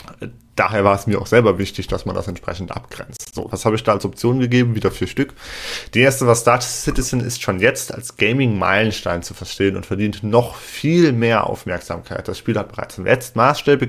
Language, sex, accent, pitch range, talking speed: German, male, German, 105-130 Hz, 205 wpm